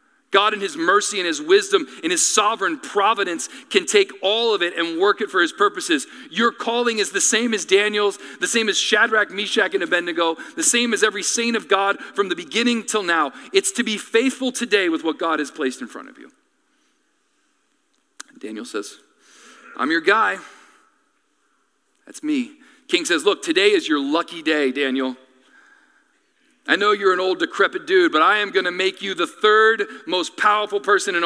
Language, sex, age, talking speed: English, male, 40-59, 185 wpm